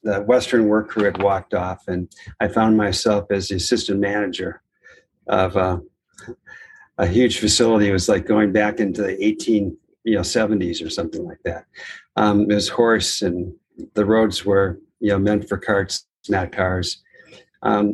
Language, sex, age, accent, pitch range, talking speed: English, male, 50-69, American, 100-110 Hz, 165 wpm